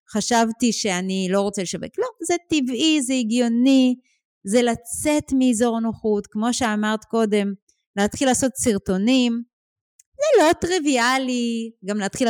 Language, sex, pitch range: Hebrew, female, 185-255 Hz